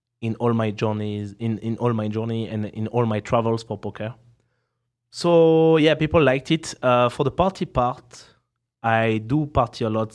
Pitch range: 110-125 Hz